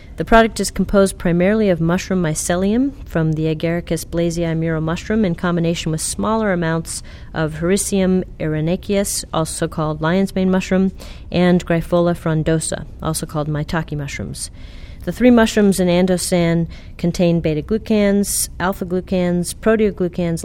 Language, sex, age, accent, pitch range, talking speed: English, female, 40-59, American, 160-190 Hz, 125 wpm